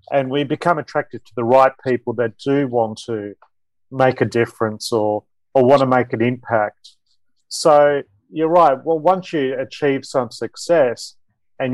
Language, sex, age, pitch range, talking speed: English, male, 40-59, 115-150 Hz, 165 wpm